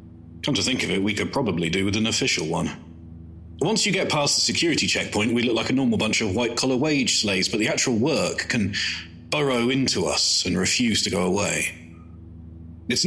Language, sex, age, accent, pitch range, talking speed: English, male, 30-49, British, 85-110 Hz, 200 wpm